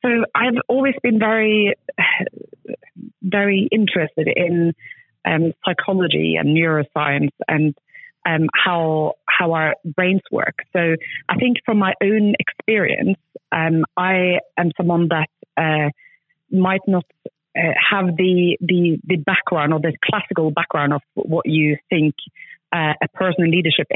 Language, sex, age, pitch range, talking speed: English, female, 30-49, 155-185 Hz, 135 wpm